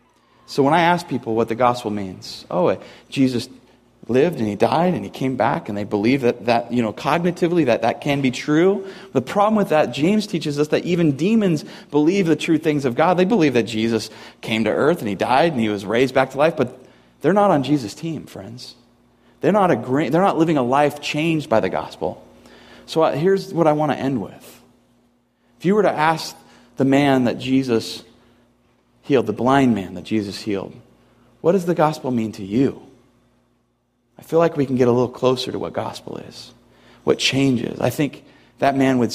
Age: 30-49